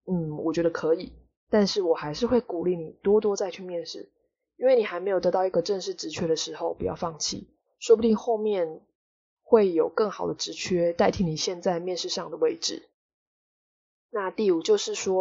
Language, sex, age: Chinese, female, 20-39